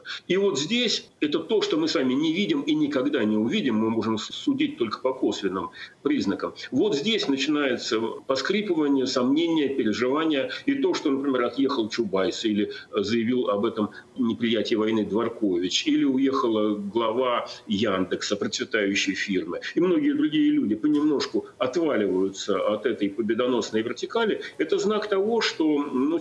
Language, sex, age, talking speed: Russian, male, 40-59, 140 wpm